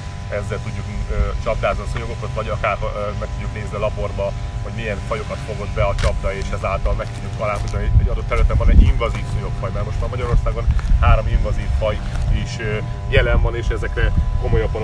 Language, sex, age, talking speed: Hungarian, male, 30-49, 190 wpm